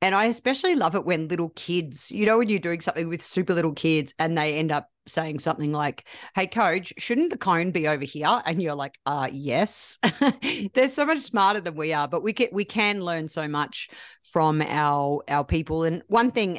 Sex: female